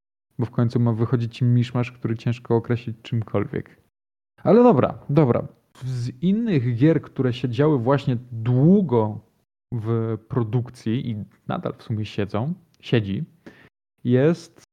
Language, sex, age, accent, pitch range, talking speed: Polish, male, 20-39, native, 115-140 Hz, 120 wpm